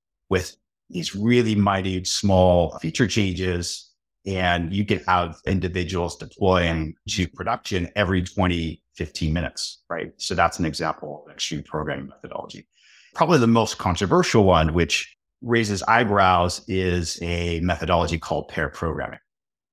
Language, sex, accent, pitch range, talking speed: English, male, American, 85-105 Hz, 130 wpm